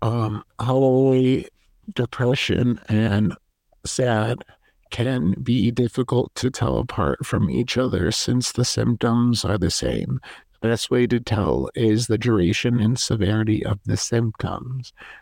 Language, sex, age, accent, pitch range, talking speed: English, male, 50-69, American, 110-125 Hz, 130 wpm